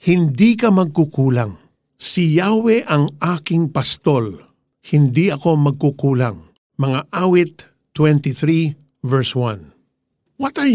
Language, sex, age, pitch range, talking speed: Filipino, male, 50-69, 130-175 Hz, 95 wpm